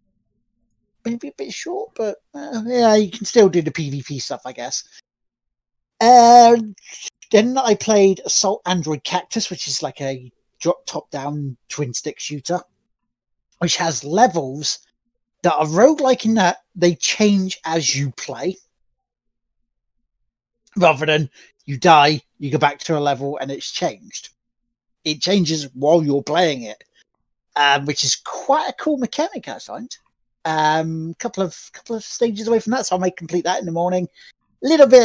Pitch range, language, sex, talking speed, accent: 150-225 Hz, English, male, 160 wpm, British